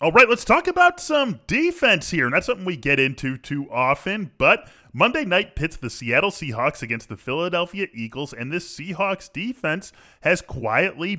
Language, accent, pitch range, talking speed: English, American, 120-175 Hz, 170 wpm